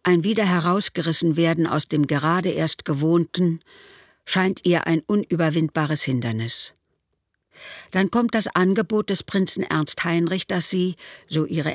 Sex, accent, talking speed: female, German, 135 wpm